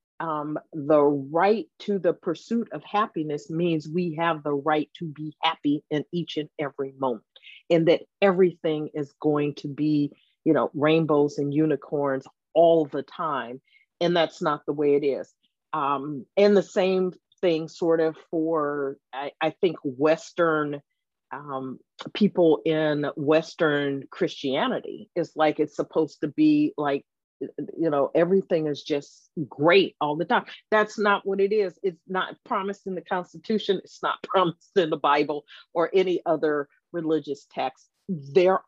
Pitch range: 145-175 Hz